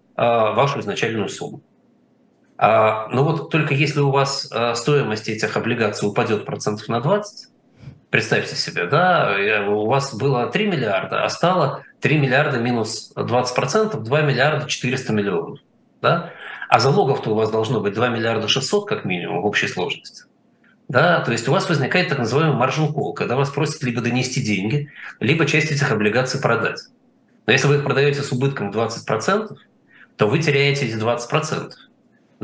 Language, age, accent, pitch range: Russian, 20-39, native, 120-150 Hz